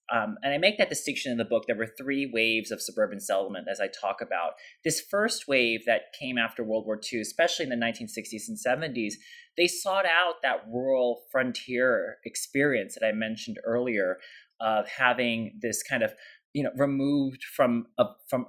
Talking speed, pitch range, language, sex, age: 190 wpm, 115-150 Hz, English, male, 30-49